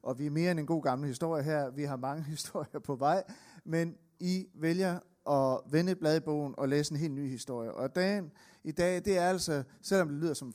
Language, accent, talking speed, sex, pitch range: Danish, native, 235 wpm, male, 140-180 Hz